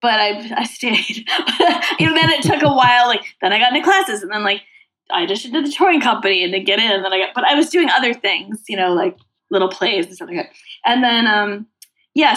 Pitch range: 185-275 Hz